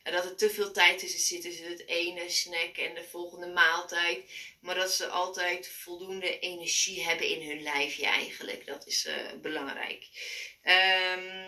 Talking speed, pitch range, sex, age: 165 wpm, 175-250 Hz, female, 20-39